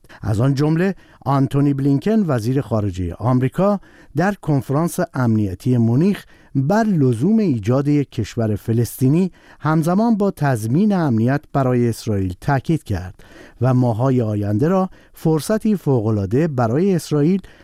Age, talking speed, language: 50-69, 115 wpm, Persian